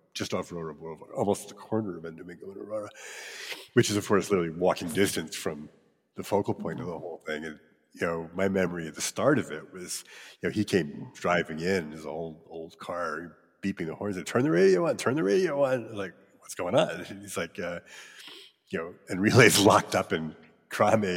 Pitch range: 85-110 Hz